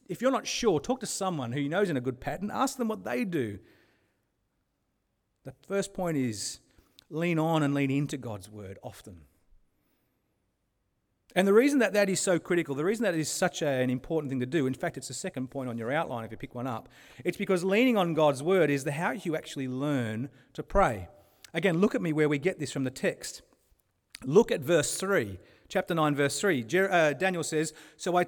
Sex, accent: male, Australian